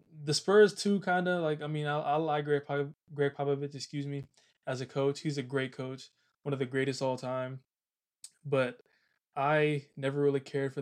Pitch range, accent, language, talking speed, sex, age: 135-150 Hz, American, English, 200 wpm, male, 20-39